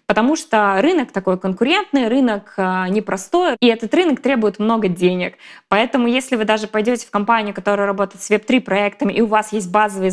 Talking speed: 185 wpm